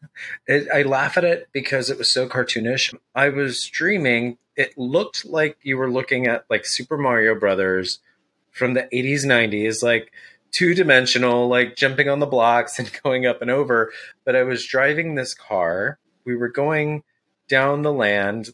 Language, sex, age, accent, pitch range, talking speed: English, male, 30-49, American, 115-140 Hz, 170 wpm